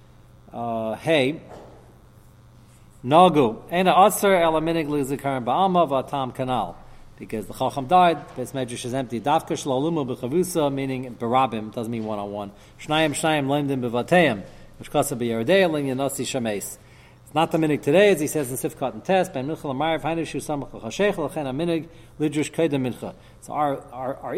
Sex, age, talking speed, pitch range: male, 40-59, 85 wpm, 130-165 Hz